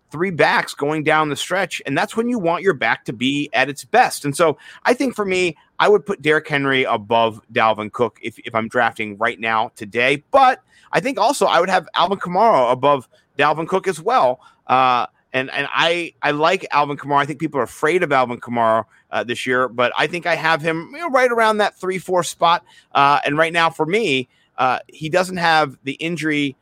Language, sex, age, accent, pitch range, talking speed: English, male, 30-49, American, 130-175 Hz, 215 wpm